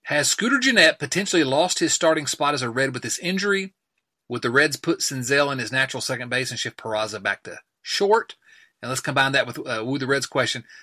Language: English